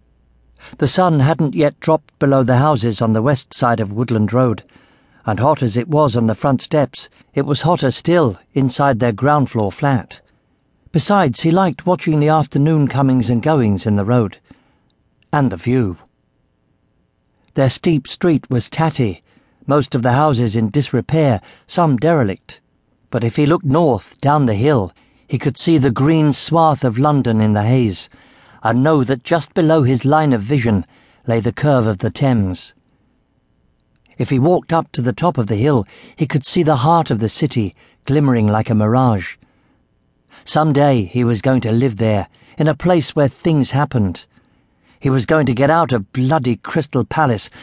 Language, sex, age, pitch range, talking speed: English, male, 50-69, 115-155 Hz, 175 wpm